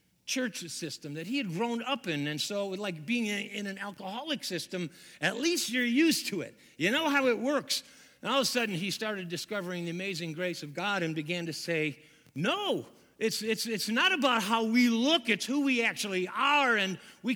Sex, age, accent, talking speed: male, 50-69, American, 205 wpm